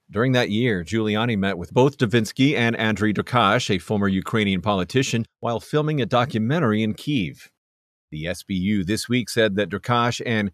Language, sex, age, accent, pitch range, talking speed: English, male, 40-59, American, 95-120 Hz, 165 wpm